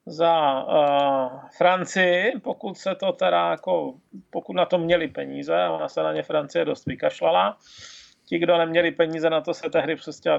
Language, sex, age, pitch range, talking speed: Czech, male, 30-49, 155-185 Hz, 165 wpm